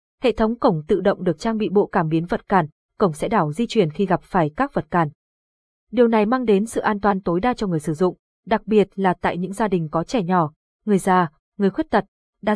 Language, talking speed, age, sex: Vietnamese, 255 wpm, 20-39, female